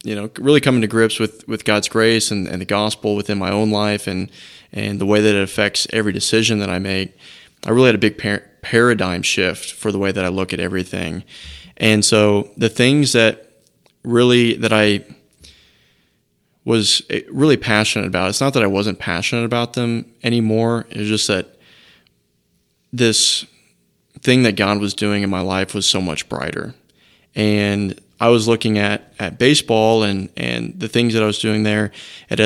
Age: 20-39